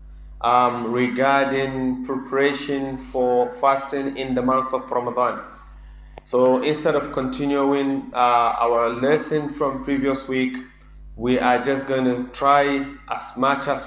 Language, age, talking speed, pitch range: English, 30-49, 125 wpm, 125-140 Hz